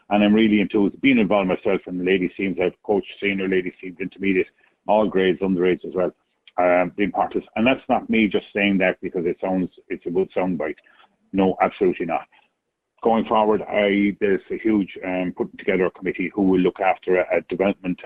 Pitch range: 90-100 Hz